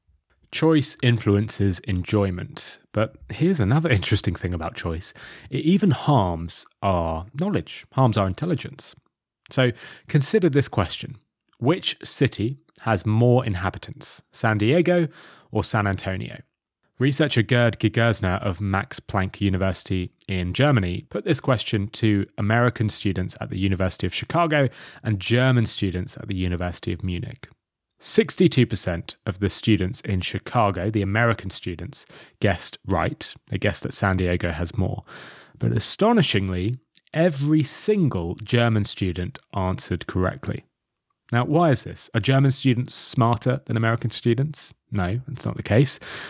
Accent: British